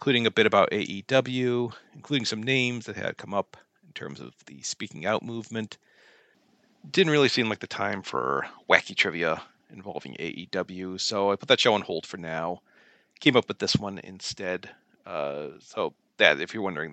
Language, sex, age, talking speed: English, male, 40-59, 180 wpm